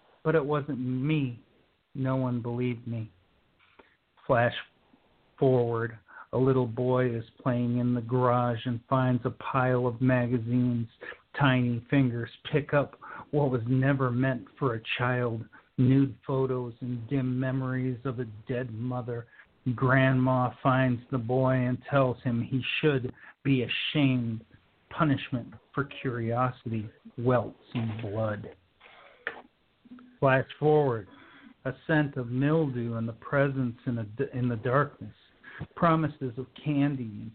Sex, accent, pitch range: male, American, 120-135 Hz